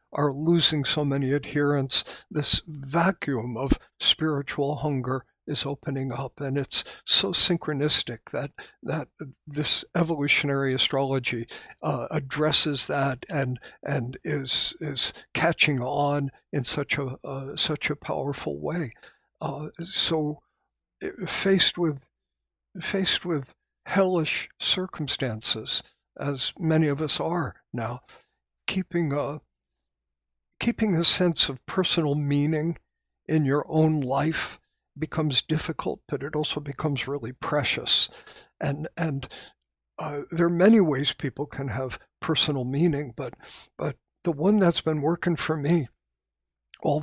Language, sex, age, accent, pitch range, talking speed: English, male, 60-79, American, 135-165 Hz, 120 wpm